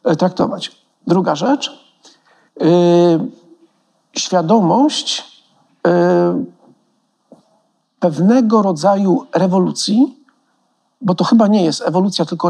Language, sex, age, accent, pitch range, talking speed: Polish, male, 50-69, native, 165-230 Hz, 60 wpm